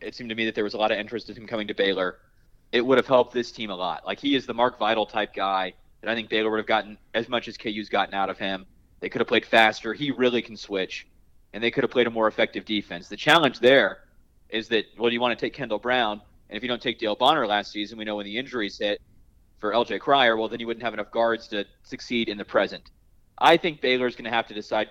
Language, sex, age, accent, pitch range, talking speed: English, male, 30-49, American, 105-120 Hz, 275 wpm